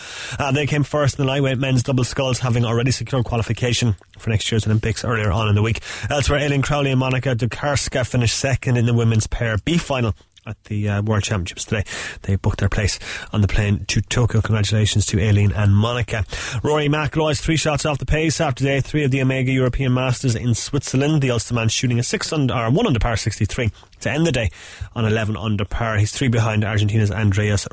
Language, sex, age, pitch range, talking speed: English, male, 20-39, 110-135 Hz, 215 wpm